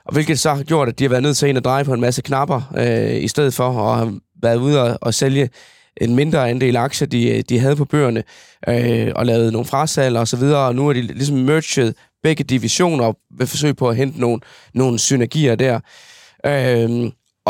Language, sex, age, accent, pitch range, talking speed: Danish, male, 20-39, native, 120-145 Hz, 215 wpm